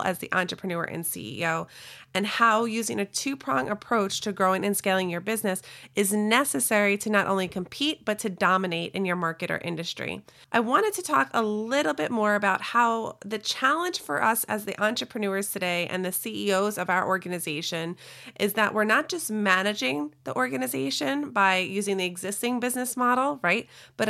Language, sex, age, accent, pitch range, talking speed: English, female, 30-49, American, 190-230 Hz, 175 wpm